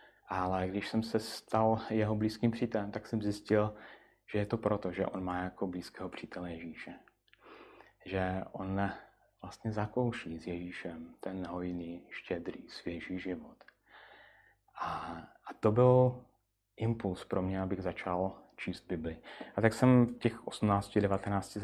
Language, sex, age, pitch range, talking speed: Czech, male, 30-49, 90-110 Hz, 140 wpm